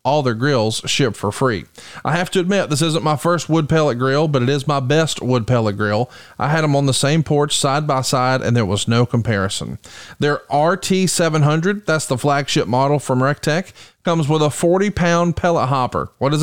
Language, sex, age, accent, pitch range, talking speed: English, male, 40-59, American, 125-160 Hz, 210 wpm